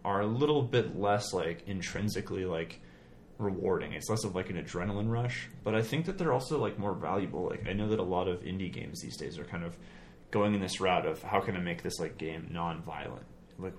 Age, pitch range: 30-49, 85-105 Hz